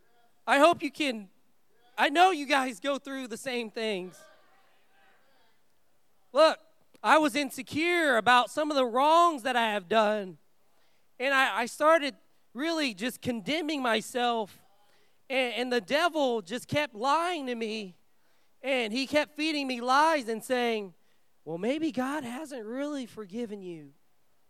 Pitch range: 225-290 Hz